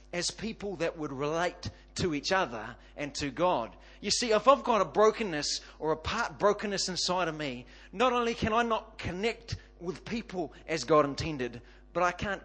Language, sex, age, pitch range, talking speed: English, male, 40-59, 130-200 Hz, 190 wpm